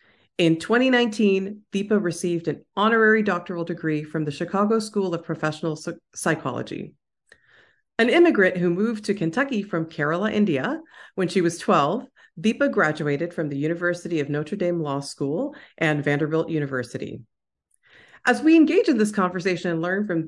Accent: American